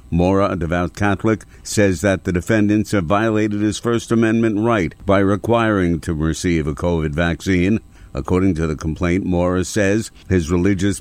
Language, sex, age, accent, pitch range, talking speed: English, male, 60-79, American, 85-100 Hz, 160 wpm